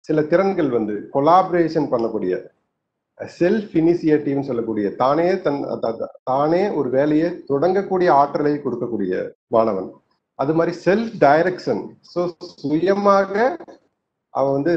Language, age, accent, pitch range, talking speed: Tamil, 30-49, native, 130-175 Hz, 50 wpm